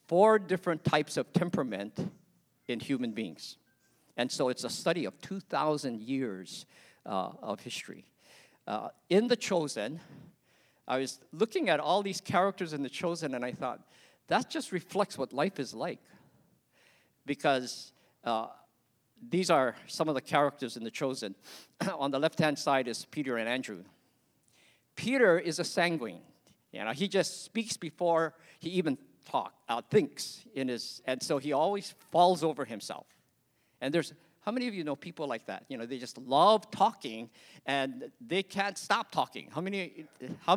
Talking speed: 160 wpm